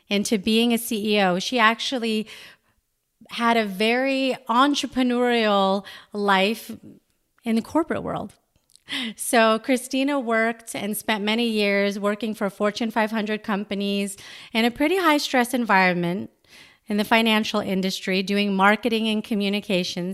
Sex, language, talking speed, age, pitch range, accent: female, English, 120 wpm, 30-49, 185-225 Hz, American